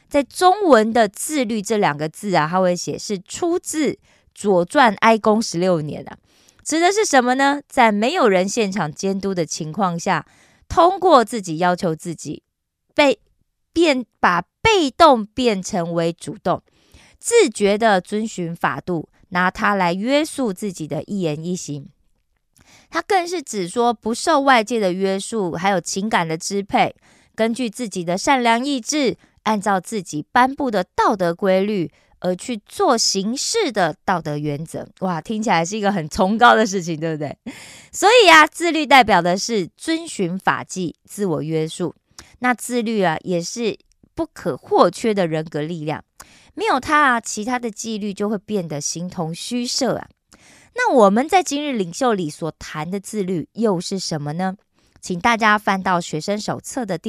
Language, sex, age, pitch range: Korean, female, 20-39, 175-250 Hz